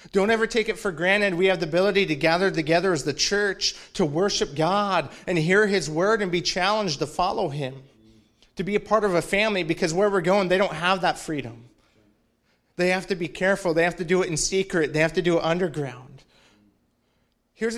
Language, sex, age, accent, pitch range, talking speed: English, male, 30-49, American, 160-200 Hz, 215 wpm